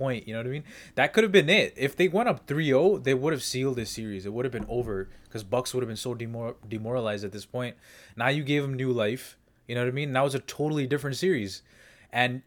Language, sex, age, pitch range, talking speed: English, male, 20-39, 110-135 Hz, 260 wpm